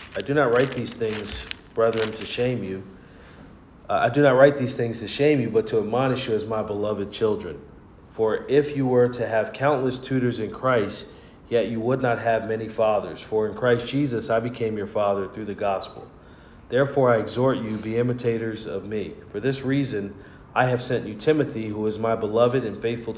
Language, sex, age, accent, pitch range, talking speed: English, male, 40-59, American, 105-125 Hz, 200 wpm